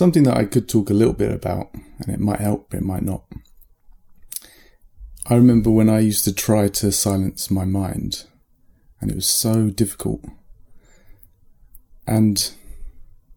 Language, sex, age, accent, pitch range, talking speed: English, male, 30-49, British, 95-110 Hz, 155 wpm